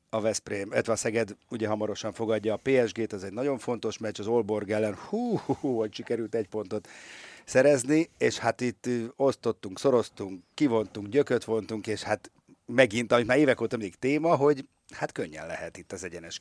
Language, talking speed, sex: Hungarian, 175 wpm, male